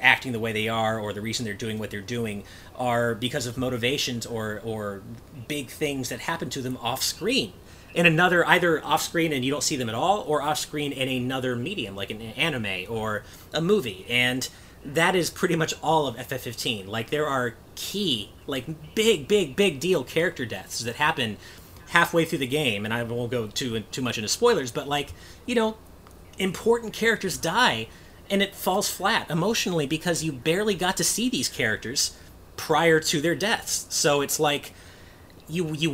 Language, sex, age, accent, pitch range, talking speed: English, male, 30-49, American, 115-160 Hz, 190 wpm